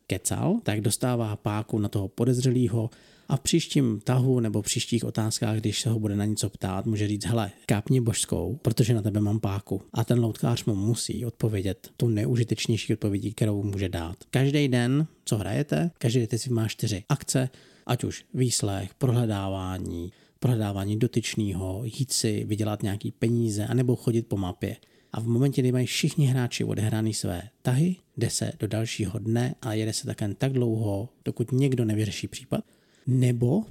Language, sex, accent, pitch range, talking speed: Czech, male, native, 105-130 Hz, 165 wpm